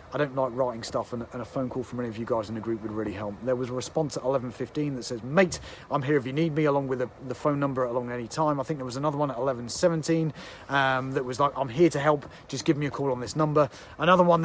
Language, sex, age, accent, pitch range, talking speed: English, male, 30-49, British, 125-155 Hz, 290 wpm